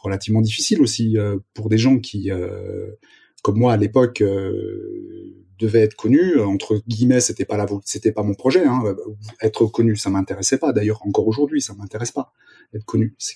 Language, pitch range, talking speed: French, 105-125 Hz, 195 wpm